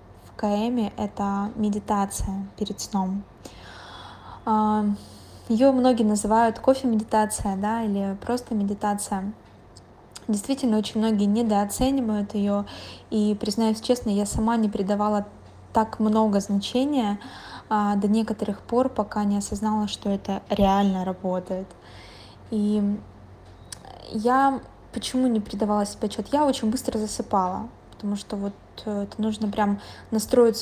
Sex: female